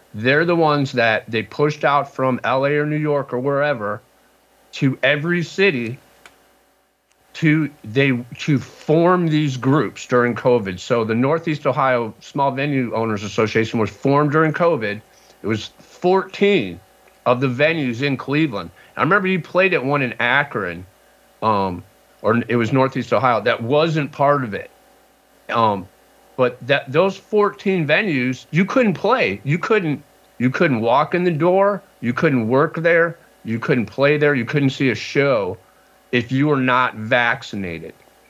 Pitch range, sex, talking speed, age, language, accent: 115-150 Hz, male, 155 wpm, 50-69, English, American